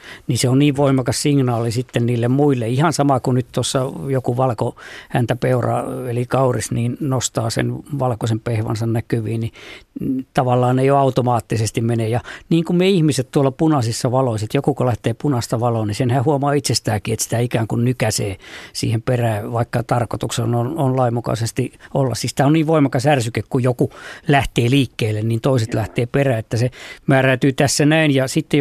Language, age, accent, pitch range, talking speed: Finnish, 50-69, native, 120-145 Hz, 170 wpm